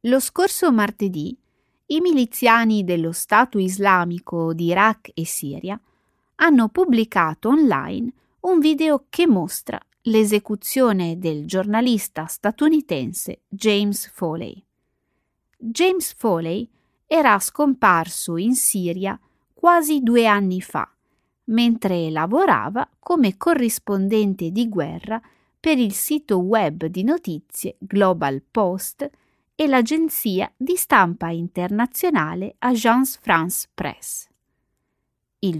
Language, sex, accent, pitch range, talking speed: Italian, female, native, 185-265 Hz, 100 wpm